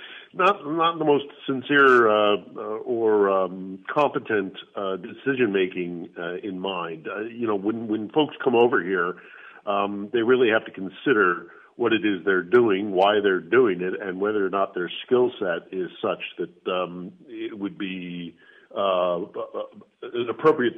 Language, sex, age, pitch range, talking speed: English, male, 50-69, 90-150 Hz, 160 wpm